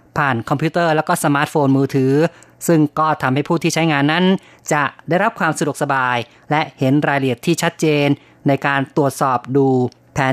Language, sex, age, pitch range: Thai, female, 30-49, 135-160 Hz